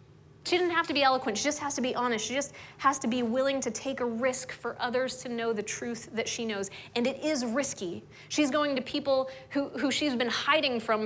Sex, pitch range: female, 195-260 Hz